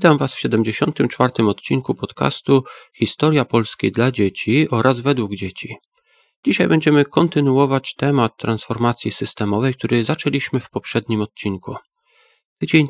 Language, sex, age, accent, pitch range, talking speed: Polish, male, 40-59, native, 115-150 Hz, 115 wpm